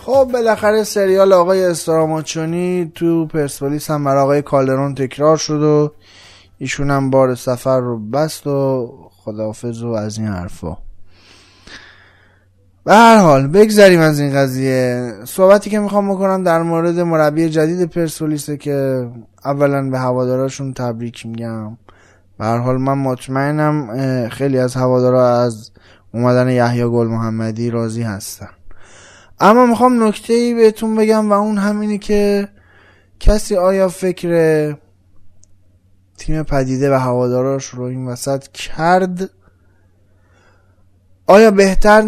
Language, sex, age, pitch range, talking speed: Persian, male, 20-39, 105-165 Hz, 125 wpm